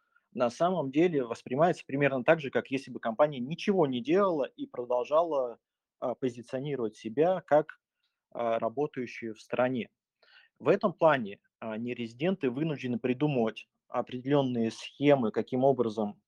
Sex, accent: male, native